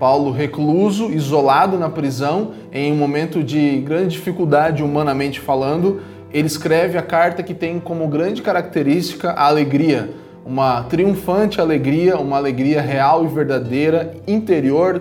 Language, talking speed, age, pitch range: Portuguese, 130 wpm, 20-39, 140-170 Hz